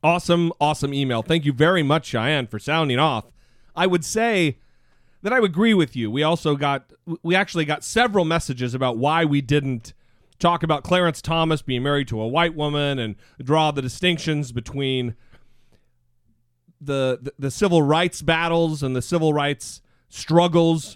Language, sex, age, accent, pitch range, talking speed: English, male, 40-59, American, 130-170 Hz, 165 wpm